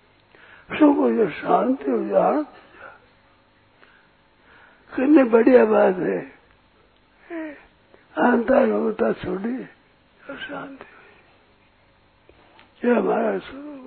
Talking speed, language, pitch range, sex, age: 65 wpm, Hindi, 205-250 Hz, male, 60-79